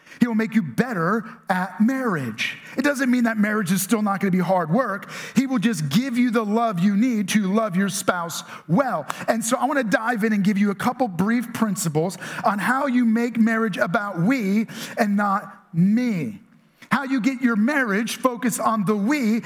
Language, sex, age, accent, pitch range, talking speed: English, male, 40-59, American, 195-235 Hz, 205 wpm